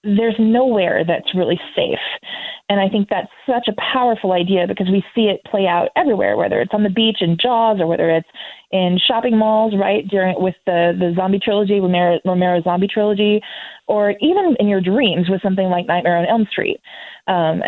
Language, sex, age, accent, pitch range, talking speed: English, female, 20-39, American, 175-215 Hz, 195 wpm